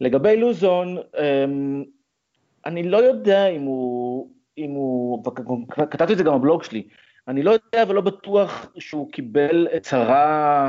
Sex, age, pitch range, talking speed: male, 30-49, 125-165 Hz, 130 wpm